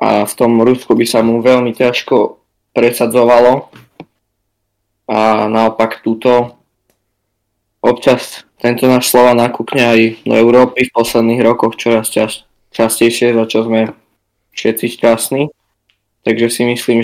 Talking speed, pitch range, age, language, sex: 125 wpm, 105-120 Hz, 20-39, Slovak, male